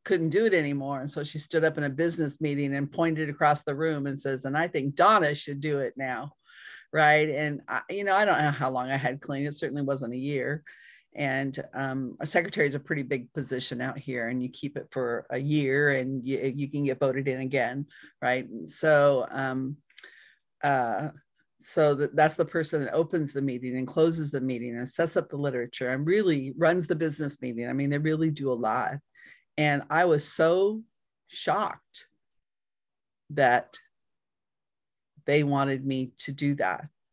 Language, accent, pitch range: English, American, 135-155 Hz